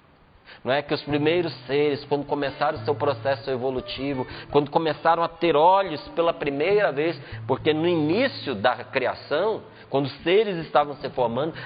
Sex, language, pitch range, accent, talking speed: male, Portuguese, 140-195 Hz, Brazilian, 160 wpm